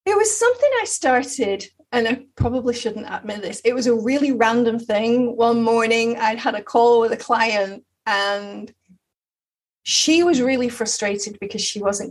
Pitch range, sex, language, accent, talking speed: 205-255 Hz, female, English, British, 170 wpm